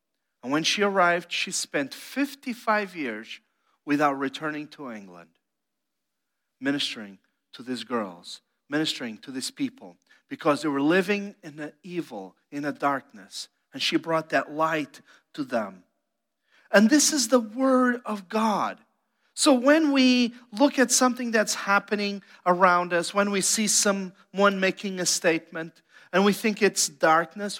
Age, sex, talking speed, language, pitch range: 40-59, male, 145 wpm, English, 170-235 Hz